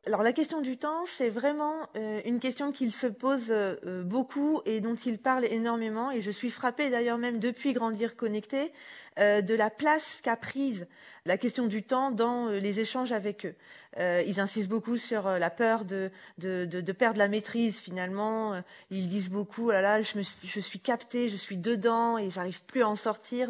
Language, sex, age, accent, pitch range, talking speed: French, female, 30-49, French, 185-235 Hz, 190 wpm